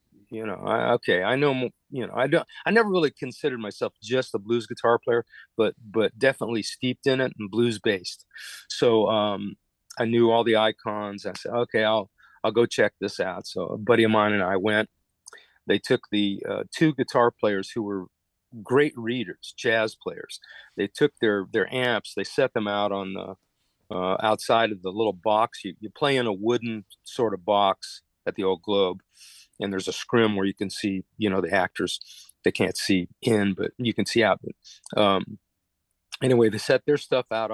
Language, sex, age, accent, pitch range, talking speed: English, male, 40-59, American, 100-120 Hz, 200 wpm